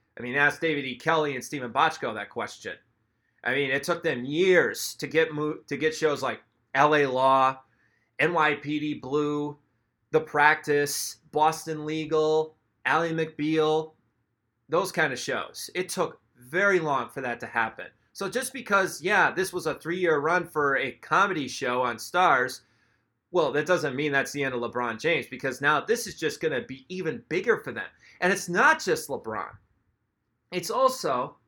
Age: 30-49